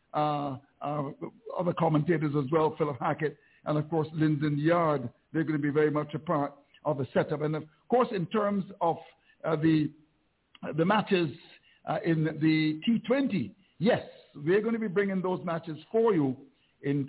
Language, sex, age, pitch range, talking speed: English, male, 60-79, 145-180 Hz, 180 wpm